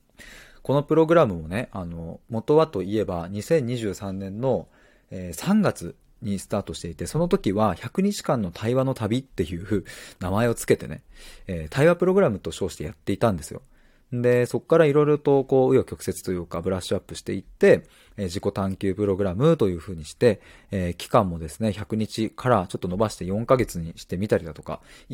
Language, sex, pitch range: Japanese, male, 95-125 Hz